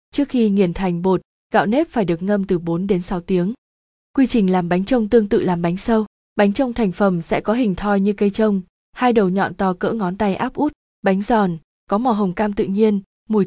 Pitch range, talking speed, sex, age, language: 185-225 Hz, 240 wpm, female, 20-39, Vietnamese